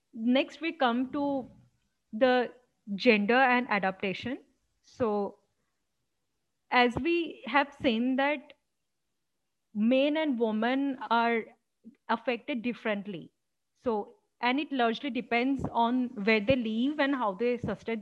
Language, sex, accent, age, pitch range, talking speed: English, female, Indian, 30-49, 225-275 Hz, 110 wpm